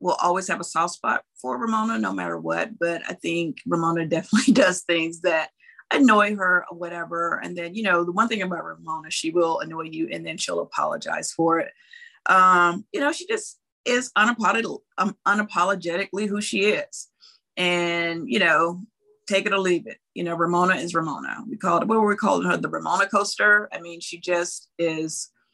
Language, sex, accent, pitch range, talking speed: English, female, American, 165-205 Hz, 190 wpm